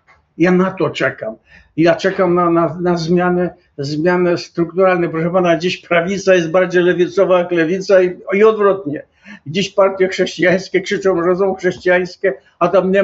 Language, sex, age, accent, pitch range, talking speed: Polish, male, 60-79, native, 165-195 Hz, 160 wpm